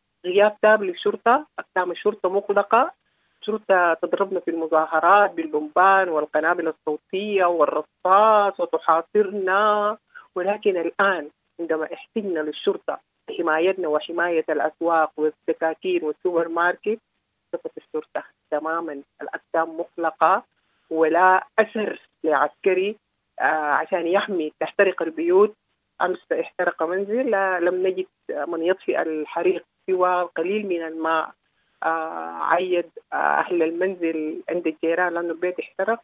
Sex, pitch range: female, 165-210 Hz